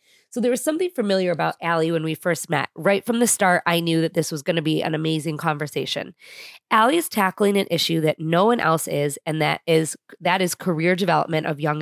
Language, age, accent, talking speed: English, 20-39, American, 230 wpm